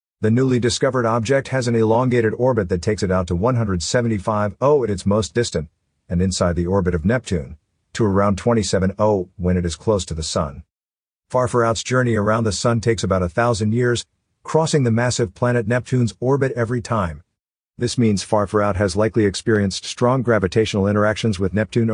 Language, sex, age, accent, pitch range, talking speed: English, male, 50-69, American, 100-125 Hz, 180 wpm